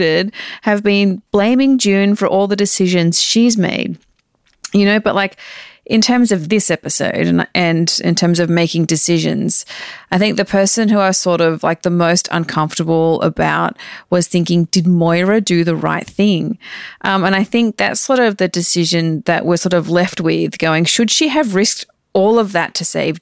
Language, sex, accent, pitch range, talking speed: English, female, Australian, 170-215 Hz, 185 wpm